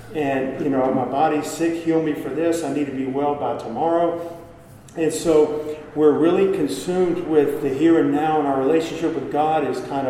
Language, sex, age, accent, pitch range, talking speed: English, male, 50-69, American, 135-165 Hz, 200 wpm